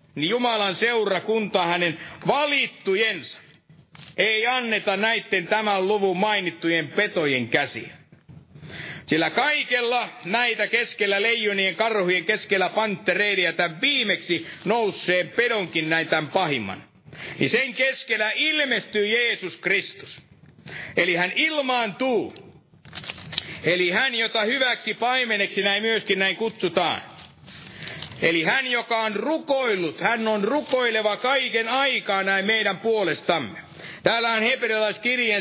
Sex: male